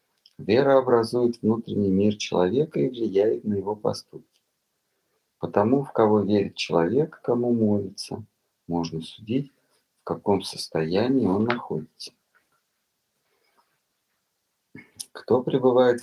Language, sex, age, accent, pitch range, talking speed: Russian, male, 40-59, native, 95-125 Hz, 95 wpm